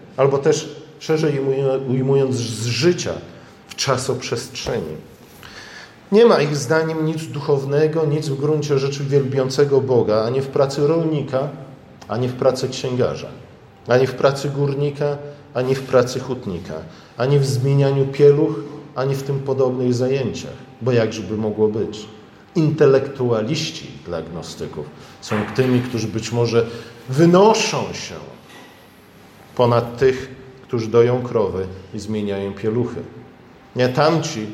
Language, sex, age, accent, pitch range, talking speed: Polish, male, 40-59, native, 115-145 Hz, 120 wpm